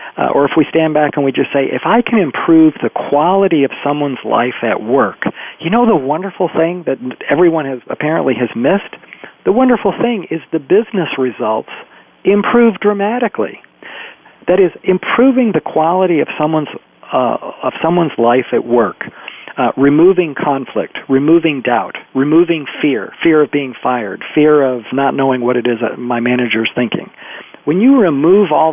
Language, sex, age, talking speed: English, male, 40-59, 165 wpm